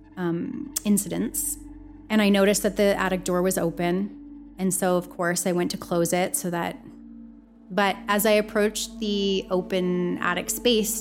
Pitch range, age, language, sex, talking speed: 180-220 Hz, 30-49, English, female, 165 wpm